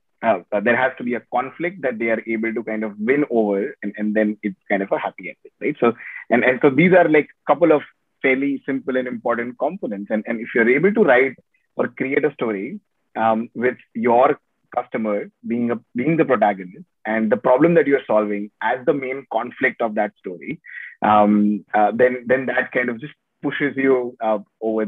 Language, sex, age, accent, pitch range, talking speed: English, male, 30-49, Indian, 110-140 Hz, 205 wpm